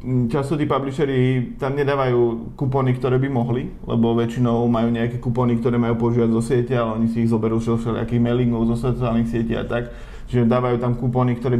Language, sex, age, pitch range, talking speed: Czech, male, 20-39, 115-125 Hz, 185 wpm